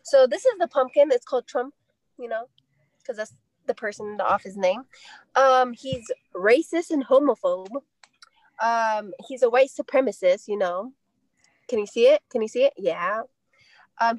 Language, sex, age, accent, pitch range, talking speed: English, female, 20-39, American, 230-290 Hz, 170 wpm